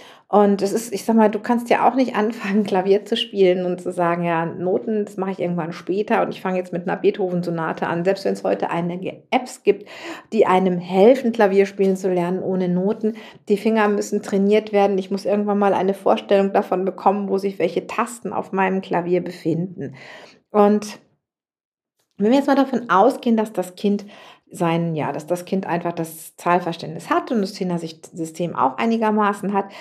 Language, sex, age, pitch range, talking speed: German, female, 50-69, 170-210 Hz, 190 wpm